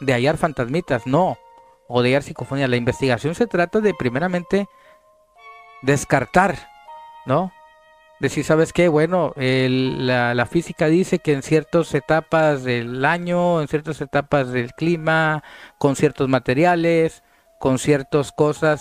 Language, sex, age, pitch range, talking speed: Spanish, male, 40-59, 135-175 Hz, 135 wpm